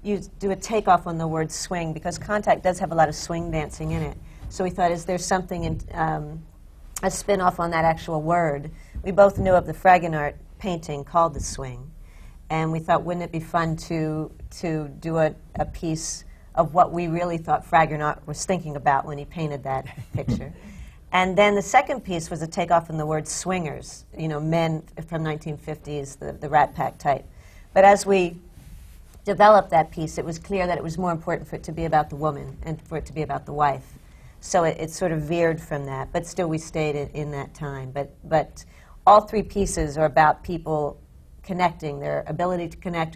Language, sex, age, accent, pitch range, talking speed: English, female, 50-69, American, 150-175 Hz, 215 wpm